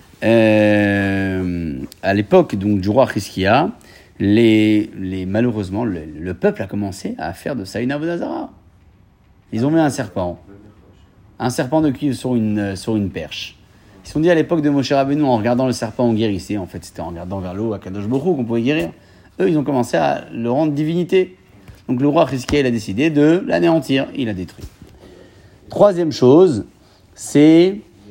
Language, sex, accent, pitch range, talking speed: French, male, French, 95-130 Hz, 175 wpm